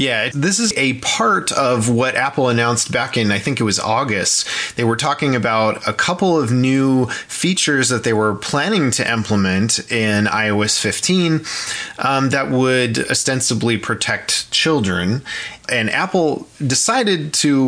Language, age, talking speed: English, 30-49, 150 wpm